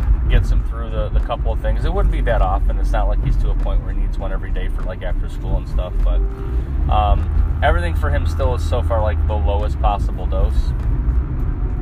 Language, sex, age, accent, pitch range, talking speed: English, male, 20-39, American, 70-95 Hz, 235 wpm